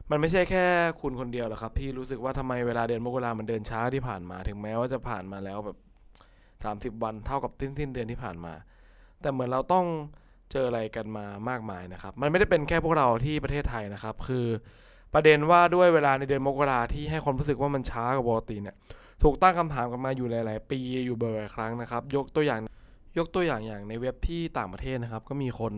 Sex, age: male, 20-39